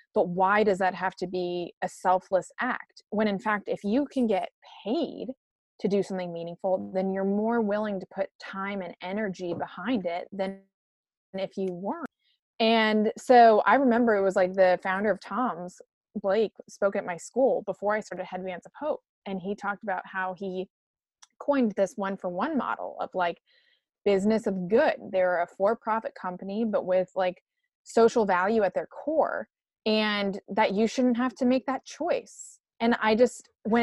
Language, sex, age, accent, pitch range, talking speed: English, female, 20-39, American, 185-225 Hz, 175 wpm